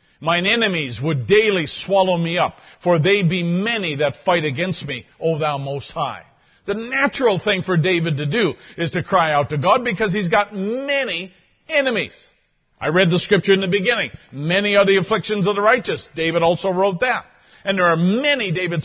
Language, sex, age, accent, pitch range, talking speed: English, male, 50-69, American, 170-220 Hz, 190 wpm